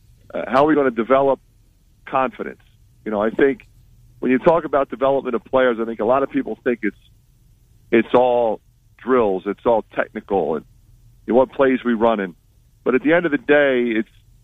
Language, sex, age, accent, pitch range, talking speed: English, male, 50-69, American, 115-135 Hz, 200 wpm